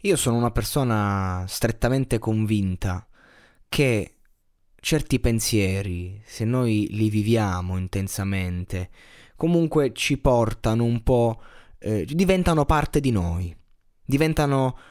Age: 20-39